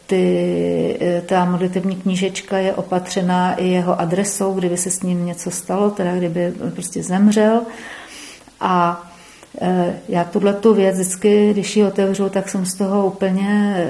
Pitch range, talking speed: 180-200 Hz, 145 wpm